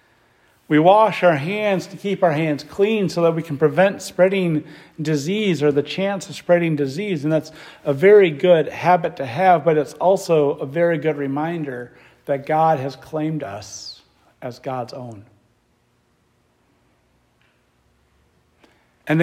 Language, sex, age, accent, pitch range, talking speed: English, male, 50-69, American, 125-175 Hz, 145 wpm